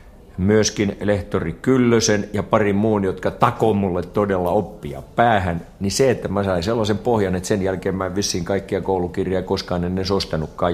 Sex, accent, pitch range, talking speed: male, native, 80-100 Hz, 155 wpm